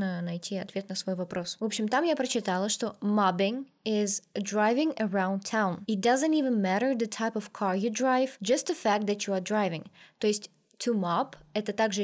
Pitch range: 200-245 Hz